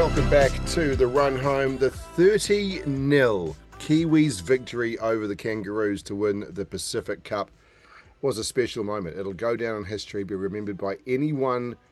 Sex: male